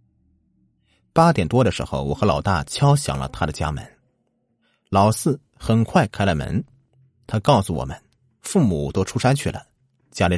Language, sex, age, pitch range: Chinese, male, 30-49, 85-135 Hz